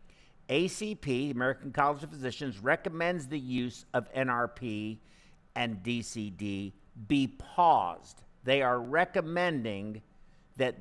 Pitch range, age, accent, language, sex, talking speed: 115-155 Hz, 50-69, American, English, male, 100 wpm